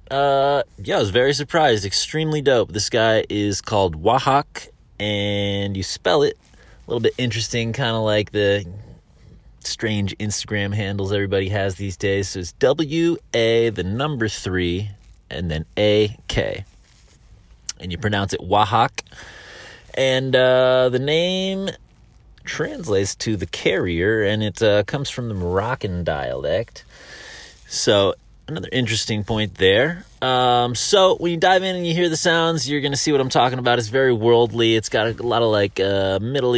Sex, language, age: male, English, 30-49